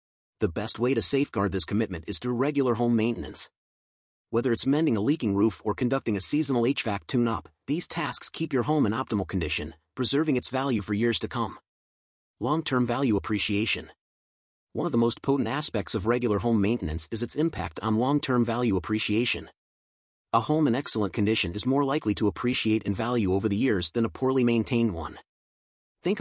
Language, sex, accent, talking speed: English, male, American, 190 wpm